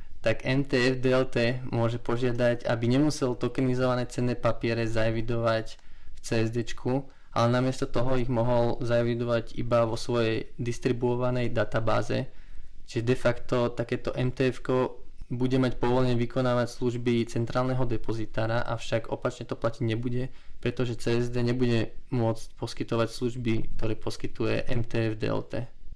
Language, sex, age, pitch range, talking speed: Slovak, male, 20-39, 115-130 Hz, 115 wpm